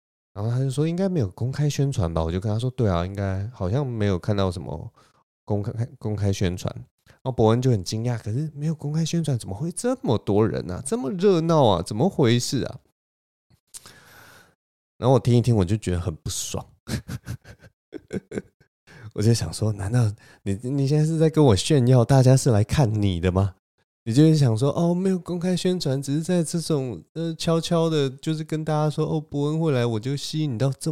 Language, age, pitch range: Chinese, 20-39, 105-150 Hz